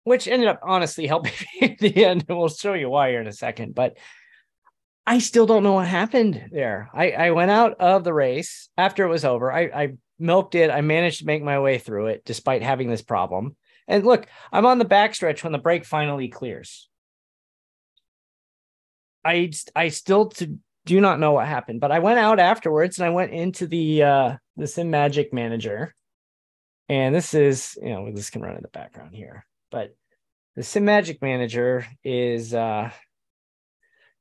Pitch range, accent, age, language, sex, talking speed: 120-175 Hz, American, 30-49, English, male, 185 wpm